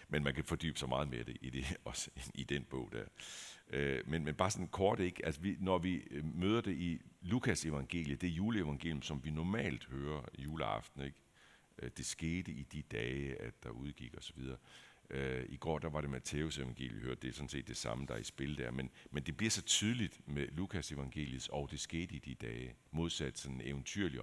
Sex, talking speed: male, 215 wpm